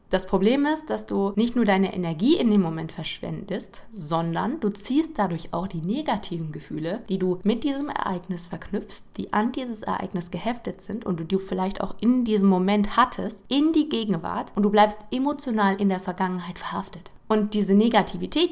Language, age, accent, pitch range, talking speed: German, 20-39, German, 180-210 Hz, 180 wpm